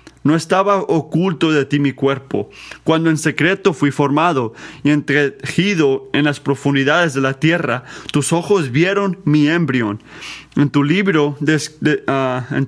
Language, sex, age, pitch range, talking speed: Spanish, male, 30-49, 140-165 Hz, 135 wpm